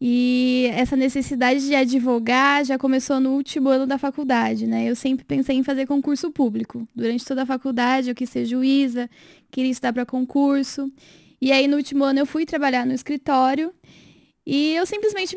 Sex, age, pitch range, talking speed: female, 10-29, 255-295 Hz, 175 wpm